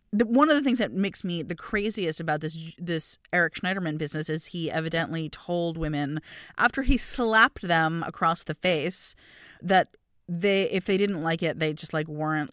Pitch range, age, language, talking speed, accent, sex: 165-225 Hz, 30-49, English, 180 wpm, American, female